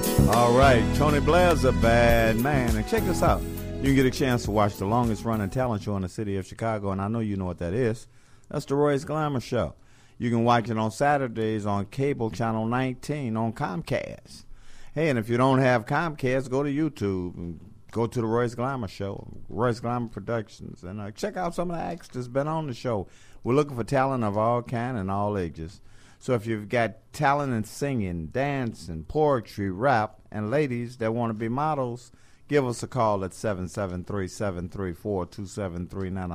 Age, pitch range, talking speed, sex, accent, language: 50-69, 105-135 Hz, 195 wpm, male, American, English